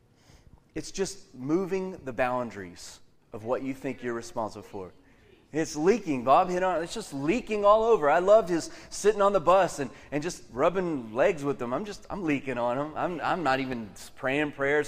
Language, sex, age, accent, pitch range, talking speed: English, male, 30-49, American, 105-140 Hz, 200 wpm